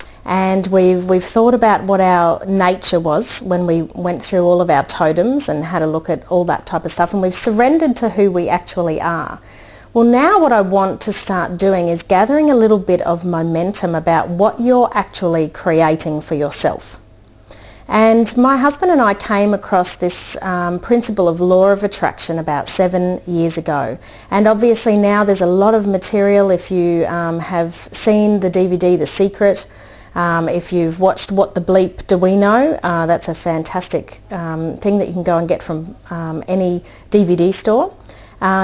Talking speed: 185 wpm